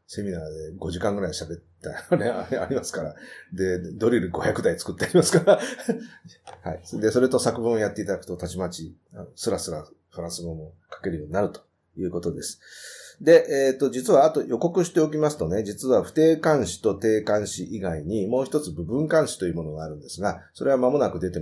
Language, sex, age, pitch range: Japanese, male, 30-49, 85-135 Hz